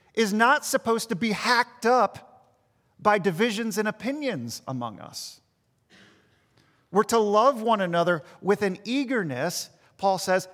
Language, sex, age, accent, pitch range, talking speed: English, male, 40-59, American, 135-190 Hz, 130 wpm